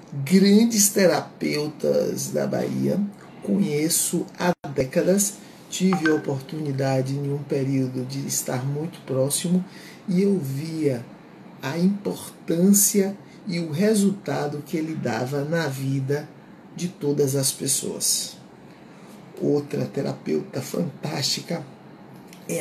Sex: male